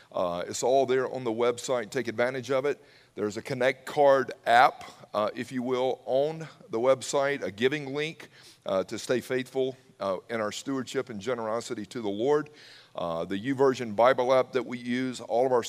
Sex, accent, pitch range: male, American, 115-140 Hz